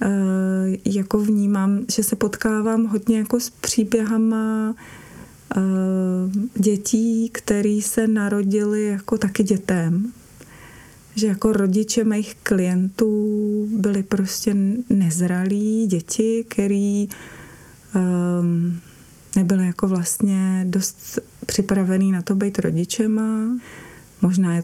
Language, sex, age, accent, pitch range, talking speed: Czech, female, 30-49, native, 170-205 Hz, 95 wpm